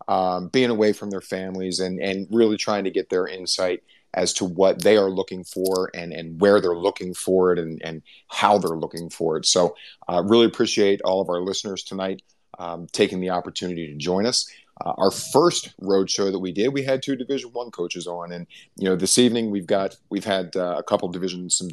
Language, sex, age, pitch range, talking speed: English, male, 30-49, 90-100 Hz, 225 wpm